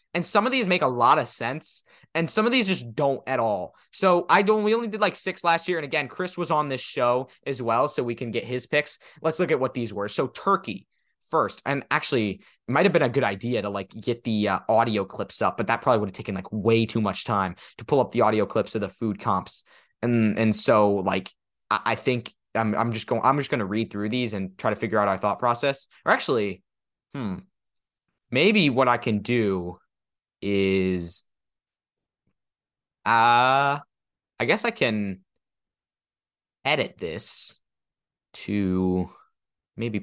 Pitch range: 100-135 Hz